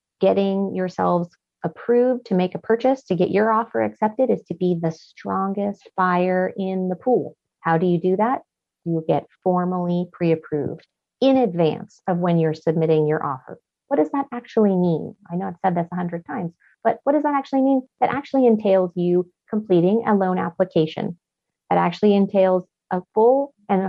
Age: 30-49